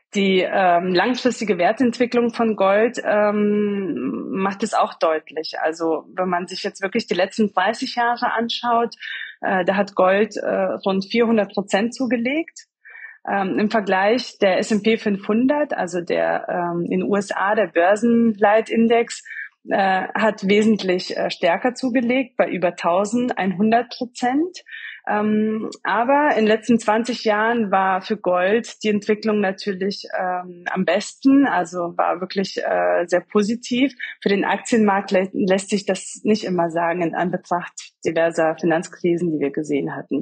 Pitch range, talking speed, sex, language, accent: 190-240 Hz, 140 wpm, female, German, German